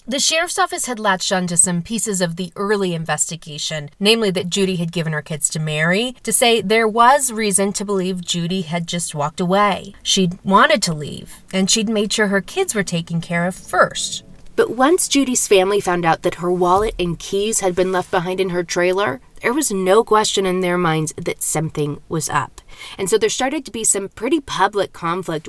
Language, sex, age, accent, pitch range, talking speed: English, female, 30-49, American, 175-225 Hz, 205 wpm